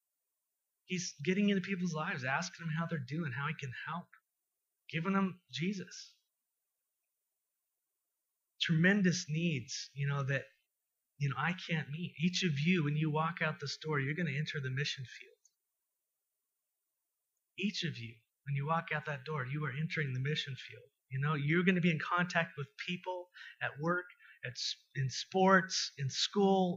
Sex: male